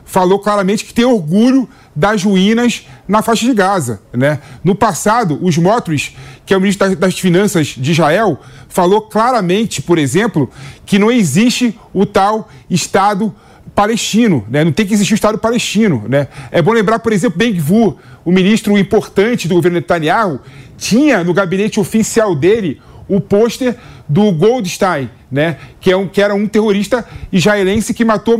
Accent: Brazilian